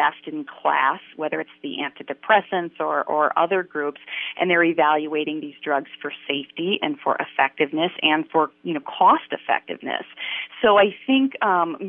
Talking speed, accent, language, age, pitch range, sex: 150 wpm, American, English, 30-49, 145-170 Hz, female